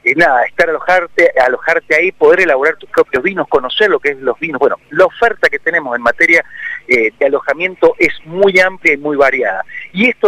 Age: 40-59